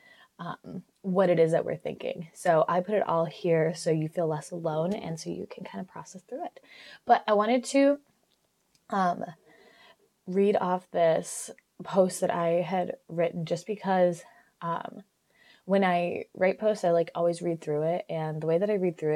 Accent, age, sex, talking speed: American, 20-39, female, 190 wpm